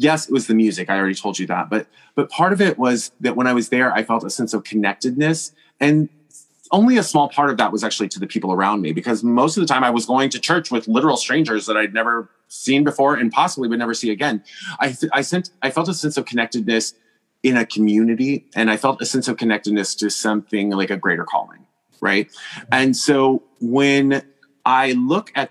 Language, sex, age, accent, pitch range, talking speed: English, male, 30-49, American, 110-140 Hz, 230 wpm